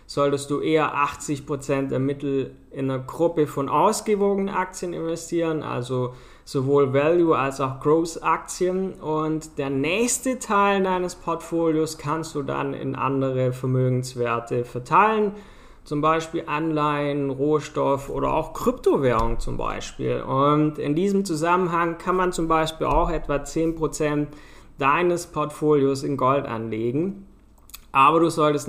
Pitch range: 130-160 Hz